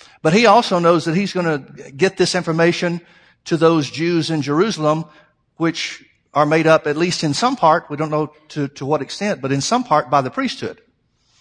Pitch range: 145-180 Hz